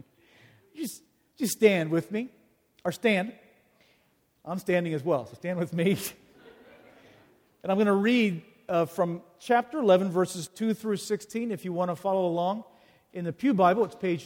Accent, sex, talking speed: American, male, 170 wpm